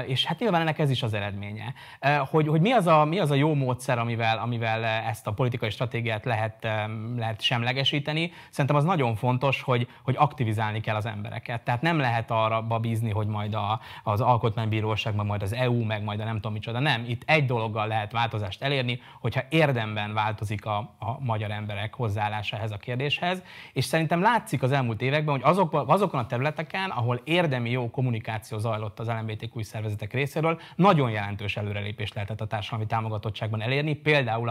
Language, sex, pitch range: Hungarian, male, 110-135 Hz